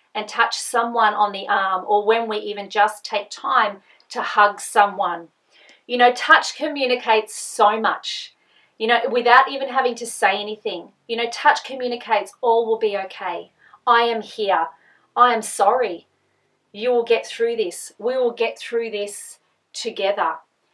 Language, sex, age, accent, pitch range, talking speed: English, female, 40-59, Australian, 210-250 Hz, 160 wpm